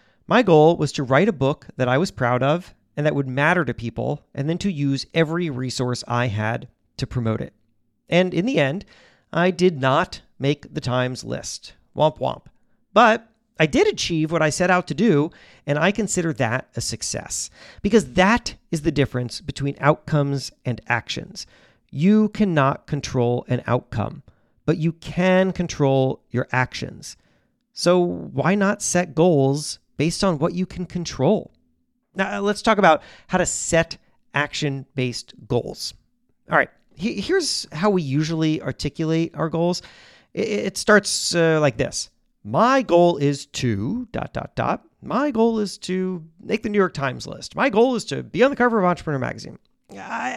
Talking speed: 170 wpm